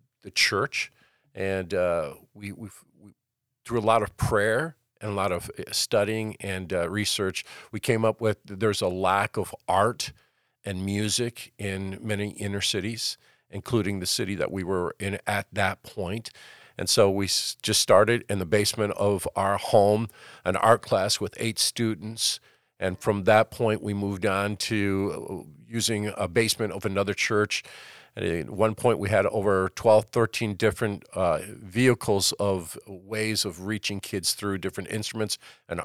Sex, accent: male, American